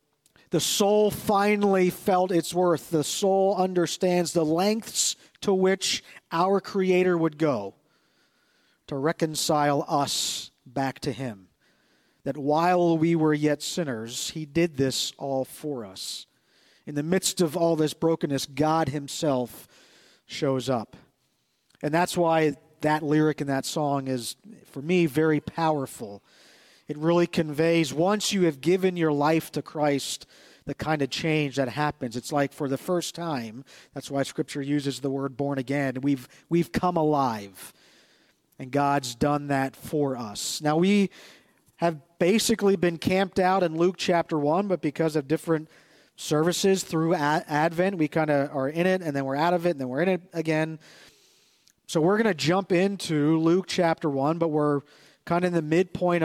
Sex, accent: male, American